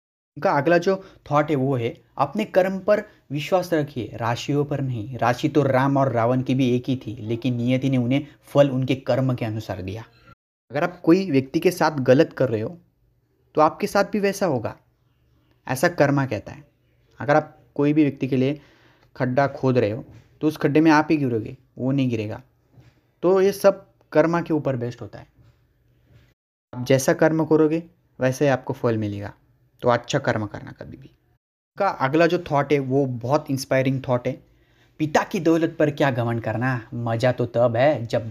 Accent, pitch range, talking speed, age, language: native, 120-160 Hz, 190 wpm, 30-49, Hindi